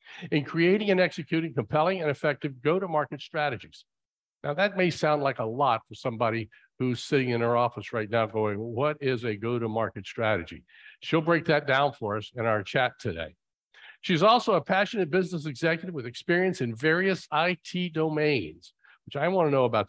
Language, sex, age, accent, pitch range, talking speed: English, male, 50-69, American, 120-170 Hz, 180 wpm